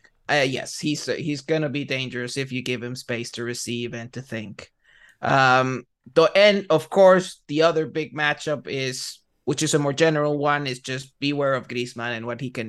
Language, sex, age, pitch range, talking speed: English, male, 30-49, 130-160 Hz, 205 wpm